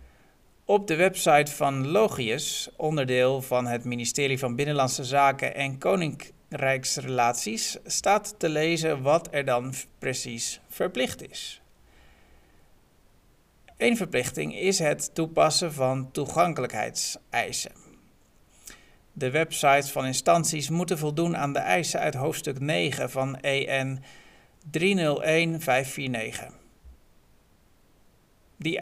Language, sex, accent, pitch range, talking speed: Dutch, male, Dutch, 130-160 Hz, 95 wpm